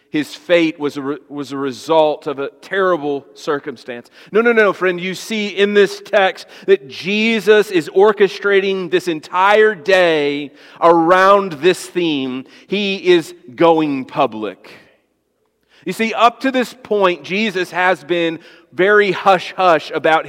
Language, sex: English, male